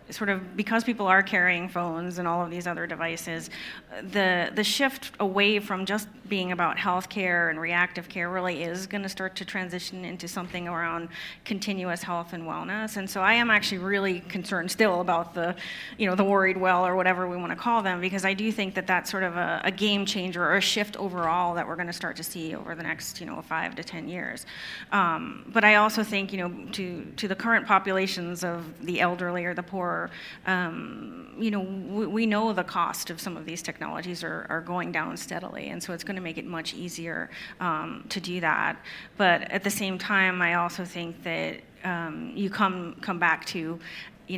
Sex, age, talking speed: female, 30-49, 215 wpm